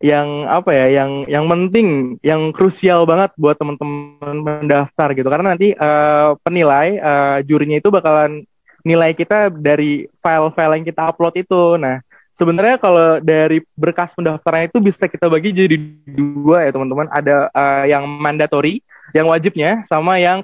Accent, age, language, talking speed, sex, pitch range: native, 20-39, Indonesian, 150 wpm, male, 145-175 Hz